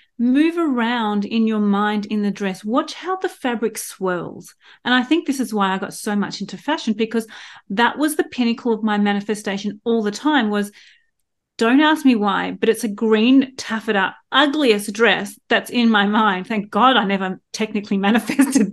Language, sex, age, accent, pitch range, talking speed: English, female, 30-49, Australian, 205-255 Hz, 185 wpm